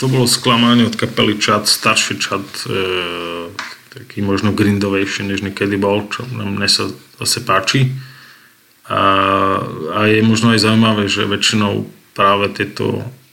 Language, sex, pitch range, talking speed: Slovak, male, 100-115 Hz, 135 wpm